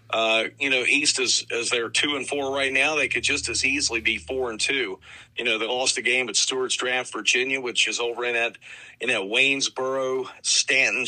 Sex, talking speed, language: male, 220 wpm, English